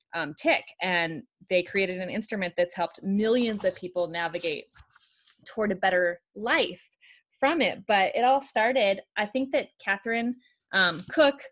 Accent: American